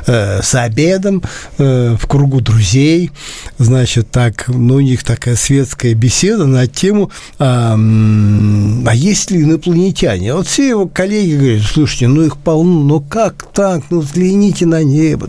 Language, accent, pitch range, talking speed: Russian, native, 125-175 Hz, 145 wpm